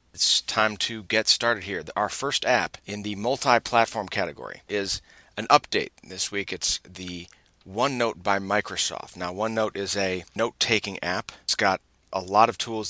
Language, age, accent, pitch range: English, 30-49, American, 95-110 Hz